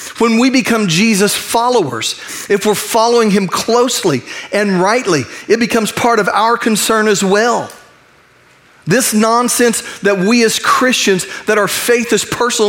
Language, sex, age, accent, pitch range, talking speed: English, male, 40-59, American, 165-230 Hz, 145 wpm